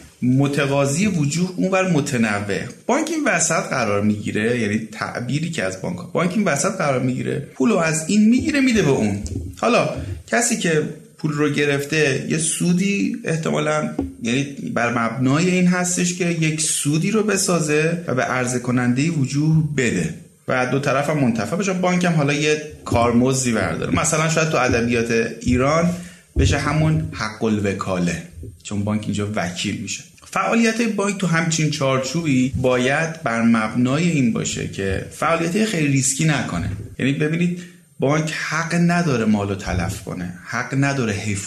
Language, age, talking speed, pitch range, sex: Persian, 30-49, 150 wpm, 110-165 Hz, male